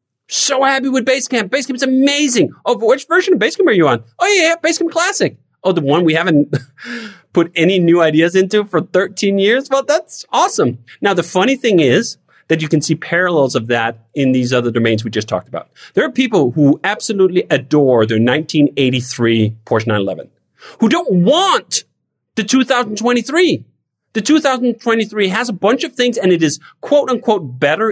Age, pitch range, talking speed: 30-49, 150-245 Hz, 180 wpm